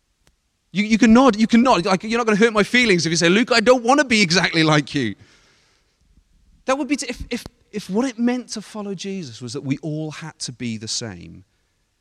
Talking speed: 235 wpm